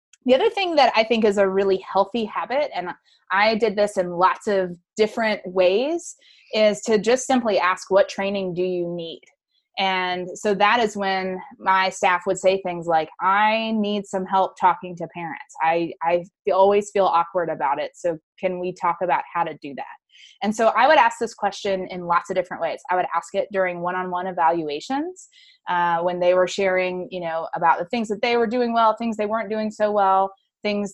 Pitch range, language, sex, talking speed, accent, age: 175-215 Hz, English, female, 205 wpm, American, 20-39